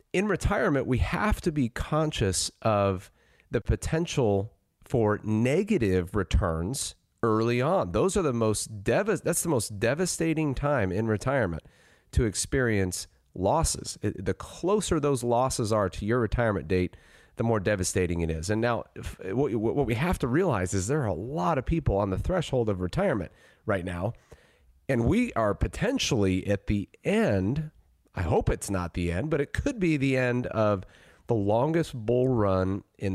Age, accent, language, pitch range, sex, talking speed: 40-59, American, English, 95-135 Hz, male, 170 wpm